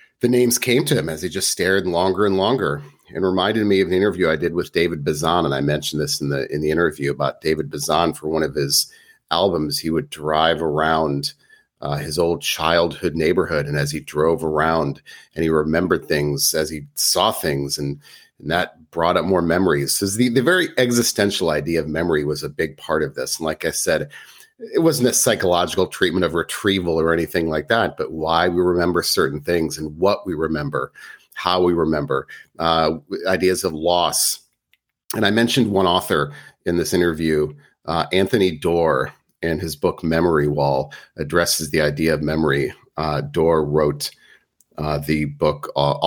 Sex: male